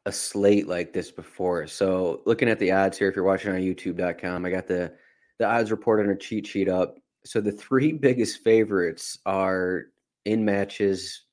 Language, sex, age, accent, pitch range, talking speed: English, male, 20-39, American, 95-105 Hz, 185 wpm